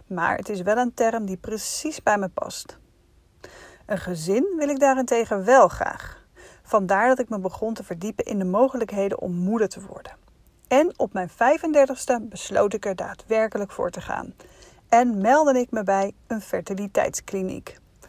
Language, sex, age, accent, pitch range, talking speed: Dutch, female, 40-59, Dutch, 200-250 Hz, 165 wpm